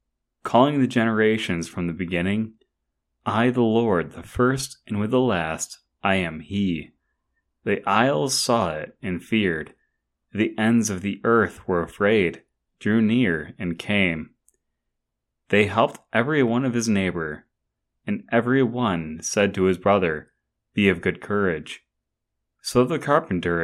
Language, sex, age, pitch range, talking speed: English, male, 30-49, 85-120 Hz, 140 wpm